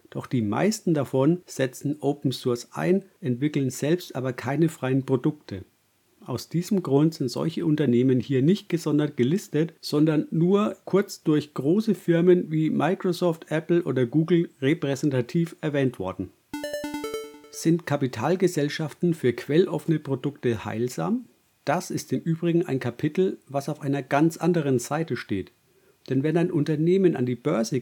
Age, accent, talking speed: 50-69, German, 140 wpm